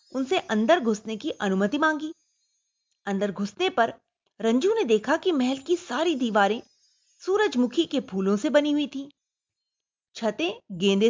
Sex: female